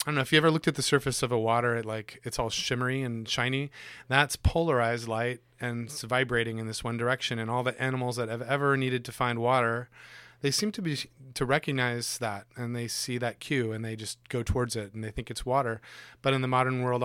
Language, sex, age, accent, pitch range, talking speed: English, male, 30-49, American, 110-130 Hz, 245 wpm